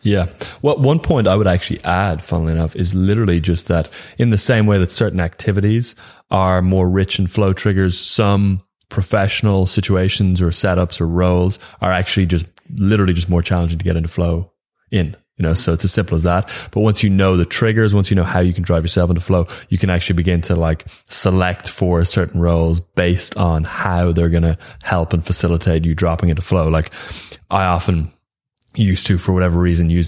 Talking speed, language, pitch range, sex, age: 205 wpm, English, 85-100 Hz, male, 20-39